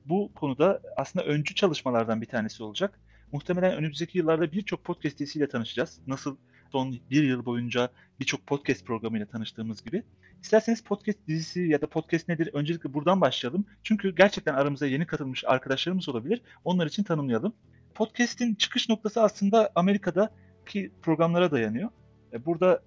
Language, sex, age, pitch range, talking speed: Turkish, male, 40-59, 130-180 Hz, 140 wpm